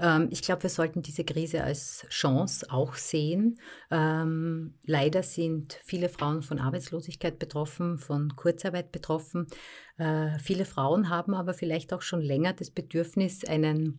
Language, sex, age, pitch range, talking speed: German, female, 50-69, 145-170 Hz, 140 wpm